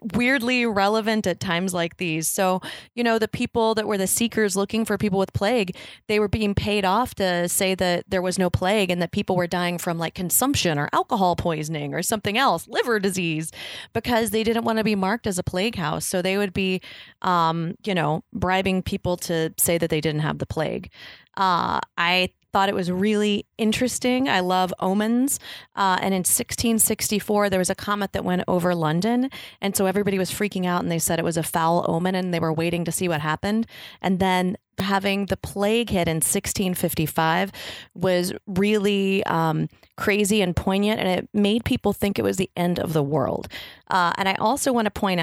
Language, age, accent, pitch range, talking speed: English, 30-49, American, 175-215 Hz, 205 wpm